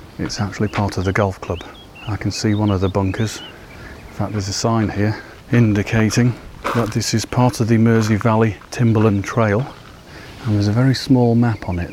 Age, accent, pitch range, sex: 40-59, British, 100-120 Hz, male